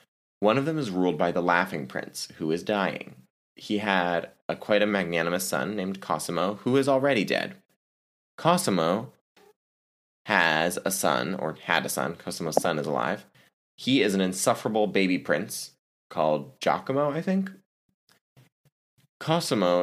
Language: English